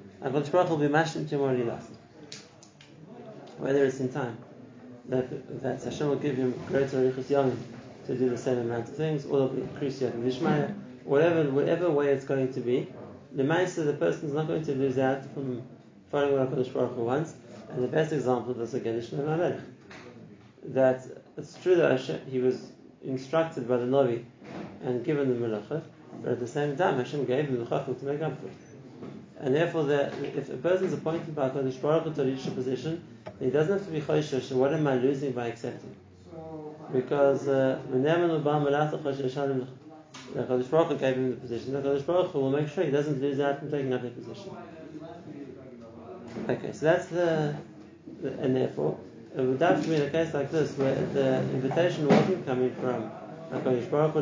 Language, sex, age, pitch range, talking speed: English, male, 30-49, 130-150 Hz, 190 wpm